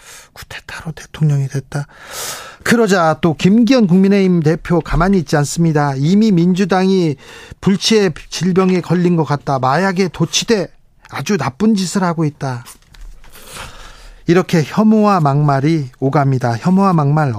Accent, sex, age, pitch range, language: native, male, 40-59, 145-185 Hz, Korean